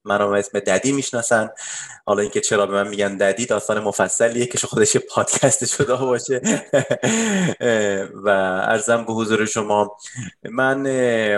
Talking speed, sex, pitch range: 125 wpm, male, 100-115 Hz